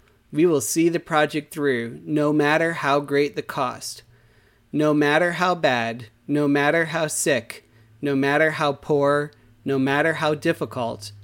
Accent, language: American, English